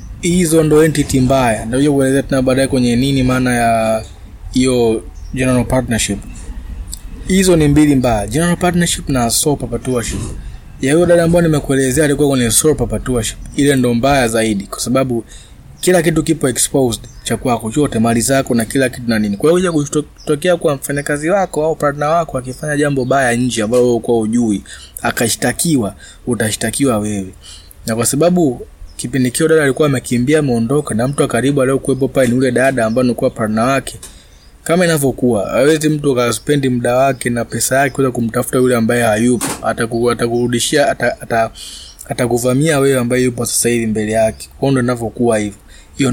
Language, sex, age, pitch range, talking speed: Swahili, male, 20-39, 110-140 Hz, 160 wpm